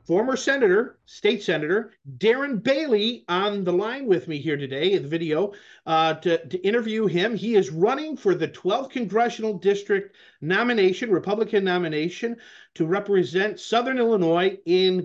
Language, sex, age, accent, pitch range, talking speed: English, male, 50-69, American, 170-220 Hz, 150 wpm